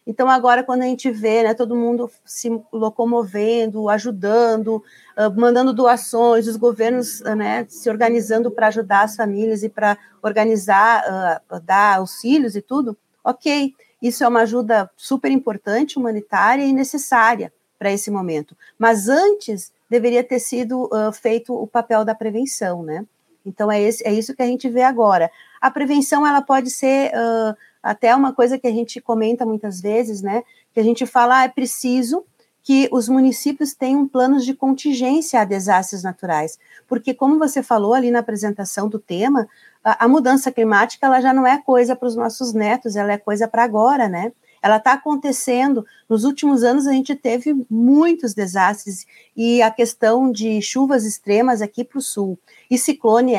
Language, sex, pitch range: Portuguese, female, 215-255 Hz